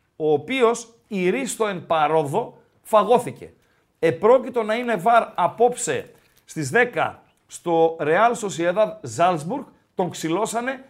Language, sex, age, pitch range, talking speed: Greek, male, 50-69, 180-245 Hz, 105 wpm